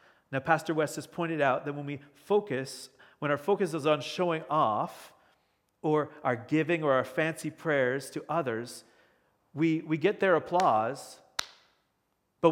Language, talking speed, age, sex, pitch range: English, 155 wpm, 40-59, male, 135-175 Hz